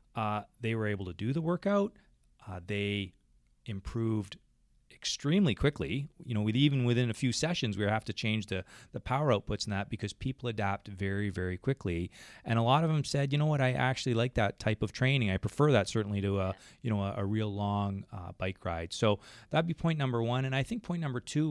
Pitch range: 105-135 Hz